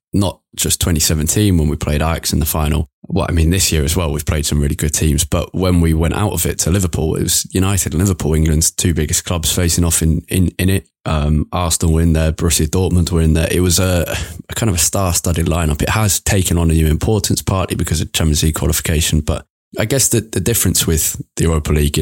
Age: 20-39